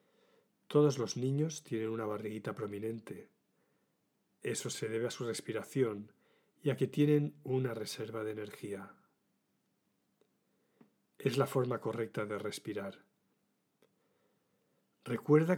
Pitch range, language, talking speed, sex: 115-140 Hz, Spanish, 110 wpm, male